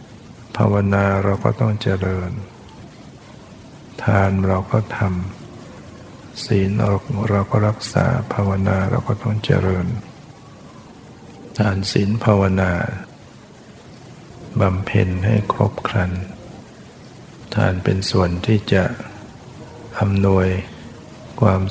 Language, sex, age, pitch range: Thai, male, 60-79, 100-115 Hz